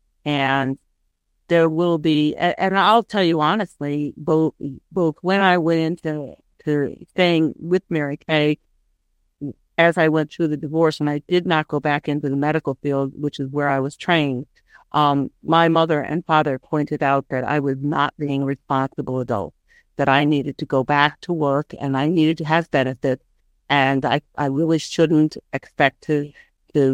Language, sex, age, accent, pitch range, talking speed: English, female, 50-69, American, 140-165 Hz, 175 wpm